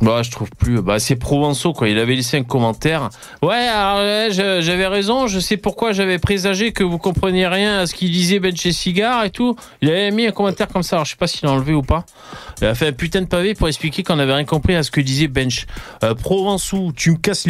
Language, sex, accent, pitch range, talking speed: French, male, French, 155-220 Hz, 255 wpm